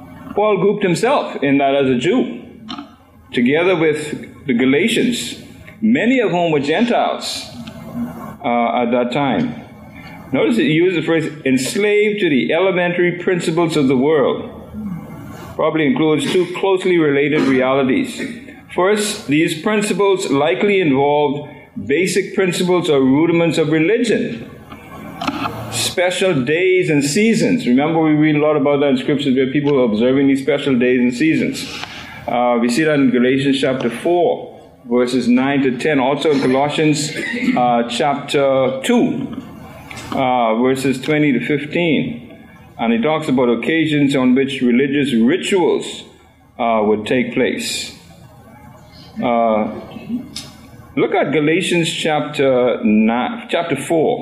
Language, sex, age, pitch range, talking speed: English, male, 50-69, 130-185 Hz, 130 wpm